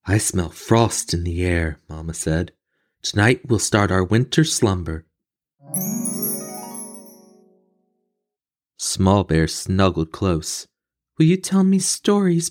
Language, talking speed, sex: English, 110 wpm, male